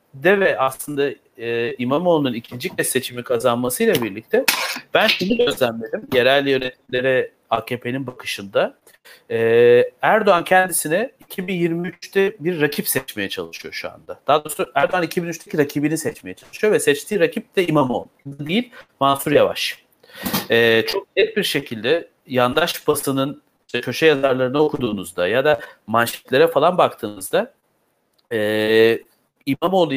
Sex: male